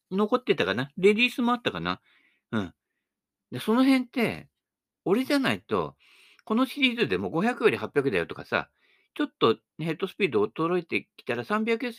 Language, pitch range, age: Japanese, 145-235 Hz, 50-69